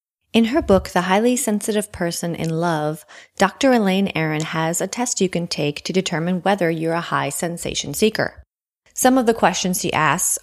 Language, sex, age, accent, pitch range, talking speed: English, female, 30-49, American, 160-215 Hz, 185 wpm